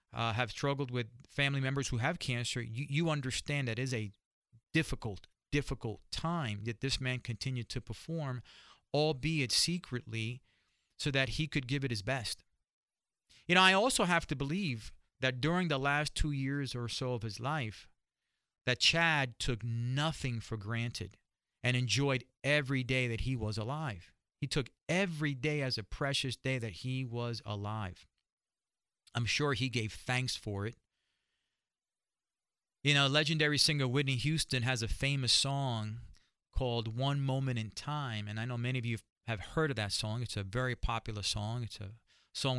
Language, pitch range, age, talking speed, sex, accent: English, 115-150 Hz, 40-59, 170 wpm, male, American